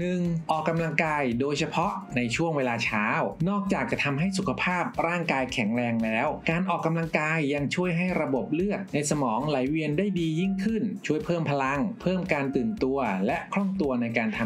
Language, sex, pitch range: Thai, male, 140-195 Hz